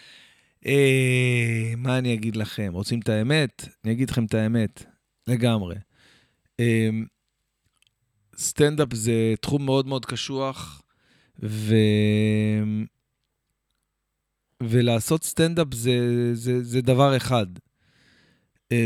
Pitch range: 115-145 Hz